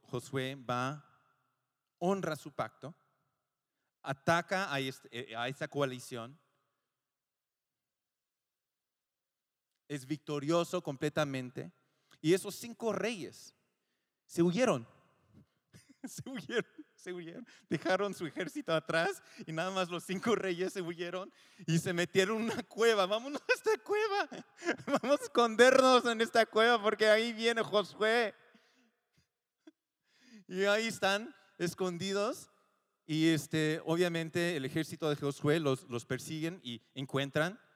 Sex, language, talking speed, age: male, Spanish, 115 wpm, 40-59